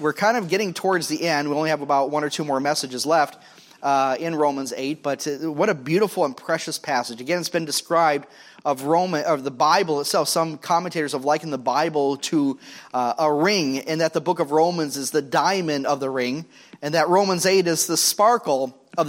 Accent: American